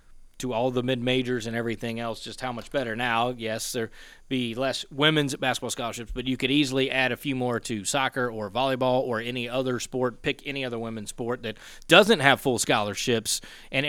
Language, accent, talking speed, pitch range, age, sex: English, American, 200 wpm, 115-135 Hz, 30-49, male